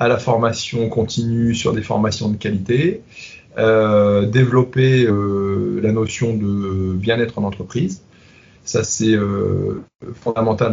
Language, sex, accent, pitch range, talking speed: French, male, French, 100-115 Hz, 125 wpm